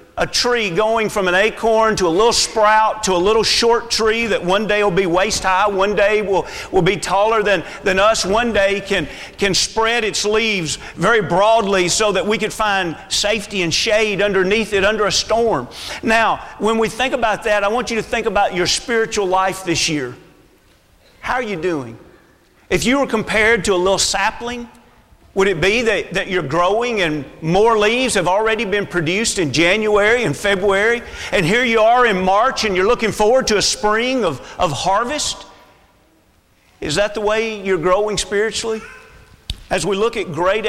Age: 40-59